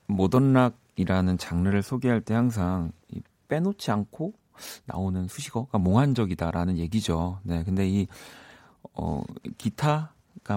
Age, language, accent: 40-59, Korean, native